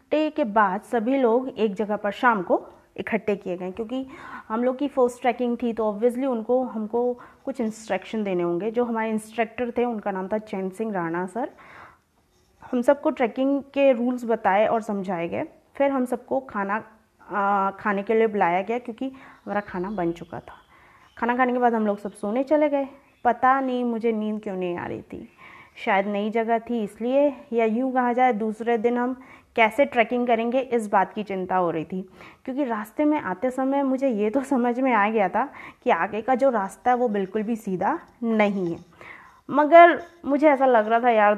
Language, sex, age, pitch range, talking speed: Hindi, female, 20-39, 200-260 Hz, 195 wpm